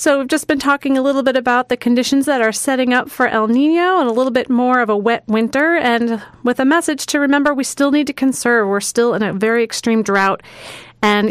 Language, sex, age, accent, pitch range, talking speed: English, female, 30-49, American, 210-270 Hz, 245 wpm